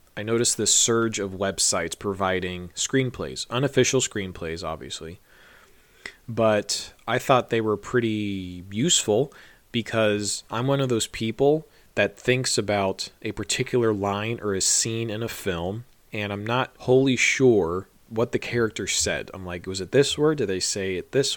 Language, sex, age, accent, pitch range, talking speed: English, male, 20-39, American, 100-125 Hz, 155 wpm